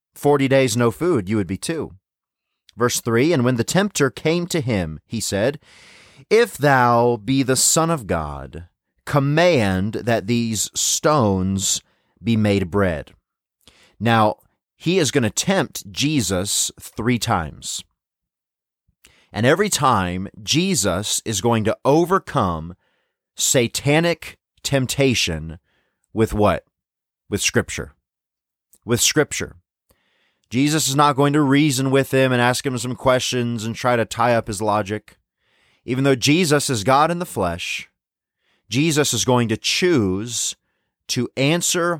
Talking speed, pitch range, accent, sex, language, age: 135 wpm, 95-135 Hz, American, male, English, 30-49